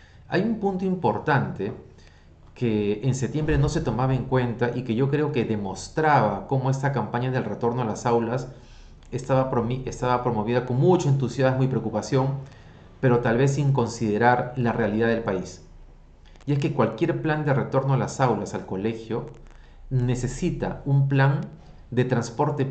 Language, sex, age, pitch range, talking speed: Spanish, male, 40-59, 110-140 Hz, 160 wpm